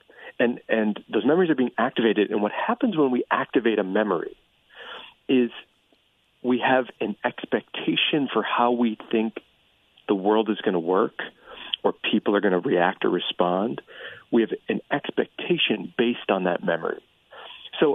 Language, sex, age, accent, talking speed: English, male, 40-59, American, 155 wpm